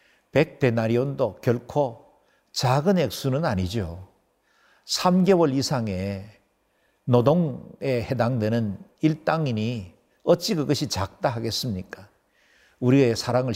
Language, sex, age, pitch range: Korean, male, 60-79, 105-145 Hz